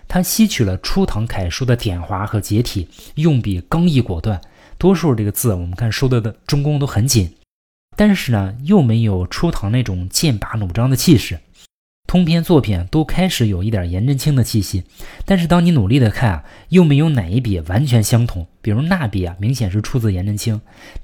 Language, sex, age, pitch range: Chinese, male, 20-39, 100-135 Hz